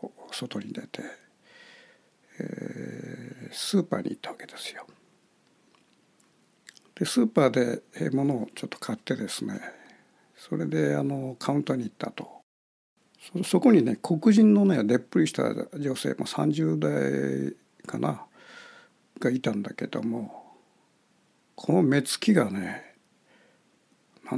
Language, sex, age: Japanese, male, 60-79